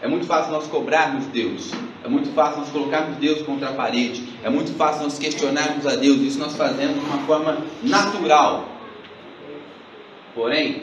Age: 30-49